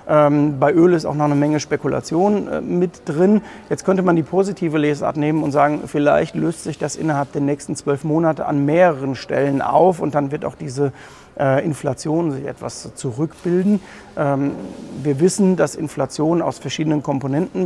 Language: German